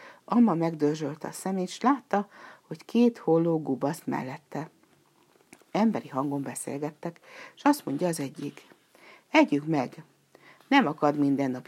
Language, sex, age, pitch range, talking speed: Hungarian, female, 60-79, 145-205 Hz, 125 wpm